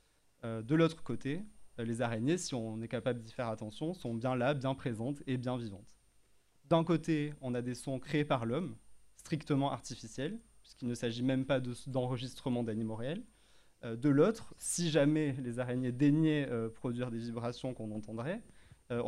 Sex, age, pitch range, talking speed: male, 30-49, 115-150 Hz, 165 wpm